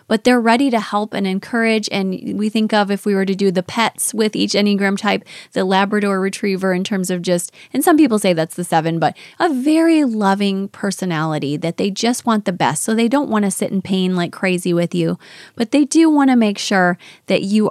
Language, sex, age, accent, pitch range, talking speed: English, female, 20-39, American, 185-225 Hz, 230 wpm